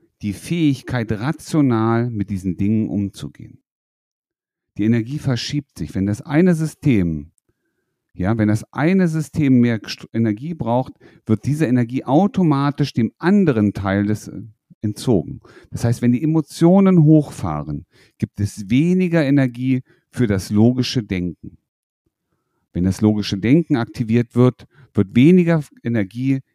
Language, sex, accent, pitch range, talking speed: German, male, German, 105-145 Hz, 125 wpm